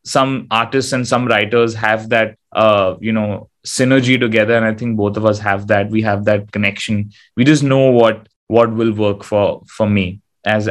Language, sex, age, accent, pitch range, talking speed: English, male, 20-39, Indian, 105-120 Hz, 195 wpm